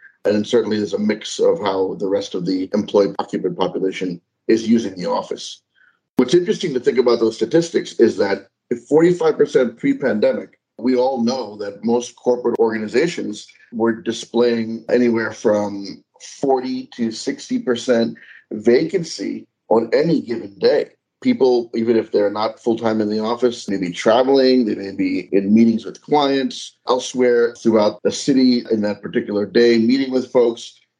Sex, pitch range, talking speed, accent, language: male, 110-140 Hz, 155 wpm, American, English